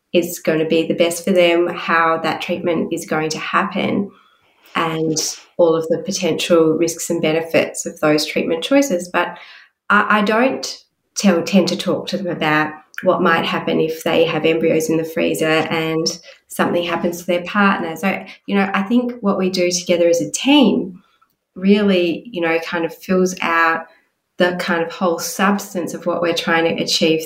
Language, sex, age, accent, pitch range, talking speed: English, female, 30-49, Australian, 165-190 Hz, 180 wpm